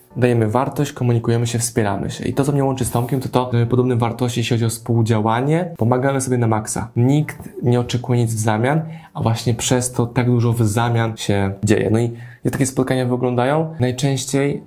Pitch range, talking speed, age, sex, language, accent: 110-130 Hz, 195 wpm, 20-39, male, Polish, native